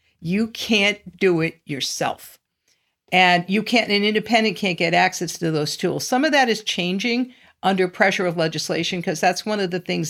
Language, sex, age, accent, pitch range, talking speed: English, female, 50-69, American, 170-220 Hz, 185 wpm